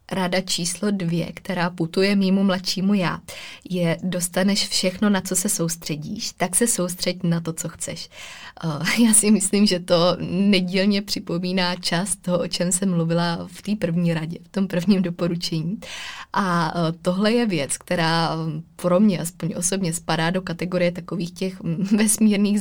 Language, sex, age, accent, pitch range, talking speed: Czech, female, 20-39, native, 170-190 Hz, 155 wpm